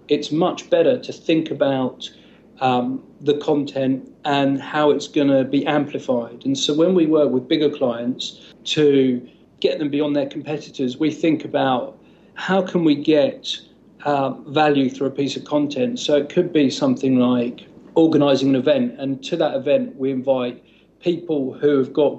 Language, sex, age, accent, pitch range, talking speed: English, male, 40-59, British, 130-150 Hz, 170 wpm